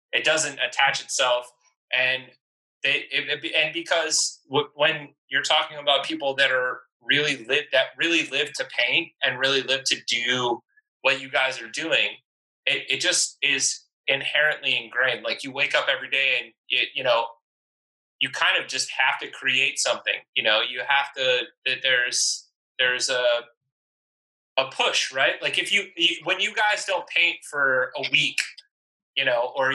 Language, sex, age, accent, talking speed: English, male, 20-39, American, 170 wpm